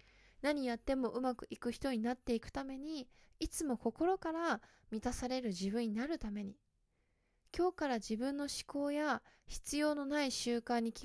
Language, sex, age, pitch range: Japanese, female, 20-39, 235-300 Hz